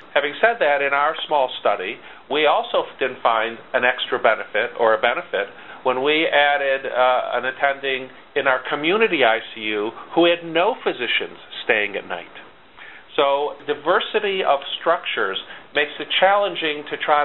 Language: English